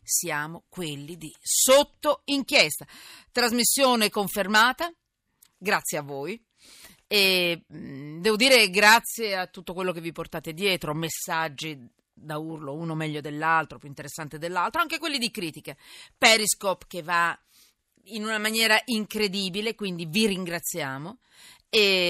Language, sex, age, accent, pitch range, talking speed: Italian, female, 40-59, native, 165-225 Hz, 120 wpm